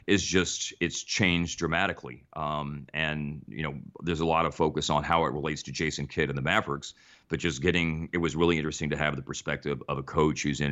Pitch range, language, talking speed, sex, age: 70-85 Hz, English, 225 wpm, male, 40-59